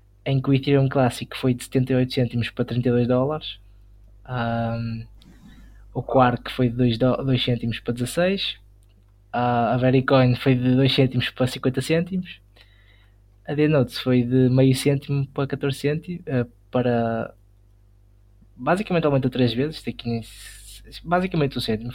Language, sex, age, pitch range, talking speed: Portuguese, male, 20-39, 110-140 Hz, 145 wpm